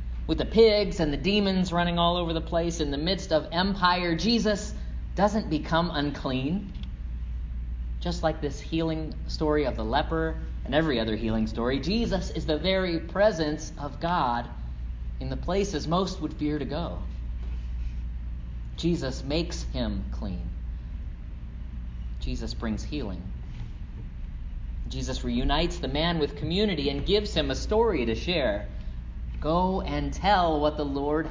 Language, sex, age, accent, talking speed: English, male, 40-59, American, 140 wpm